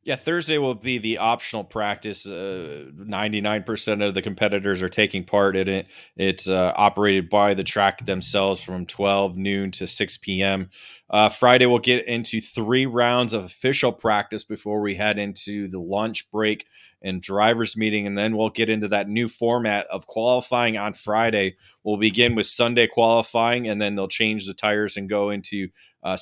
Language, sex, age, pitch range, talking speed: English, male, 20-39, 100-125 Hz, 175 wpm